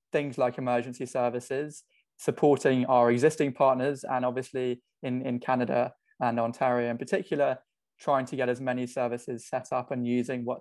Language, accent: English, British